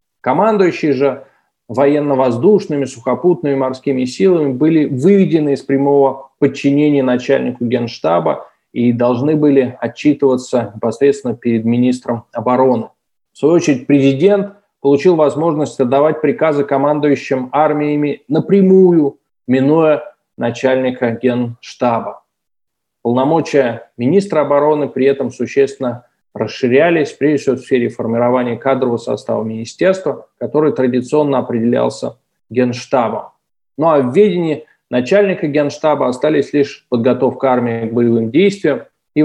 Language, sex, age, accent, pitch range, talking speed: Russian, male, 20-39, native, 125-155 Hz, 100 wpm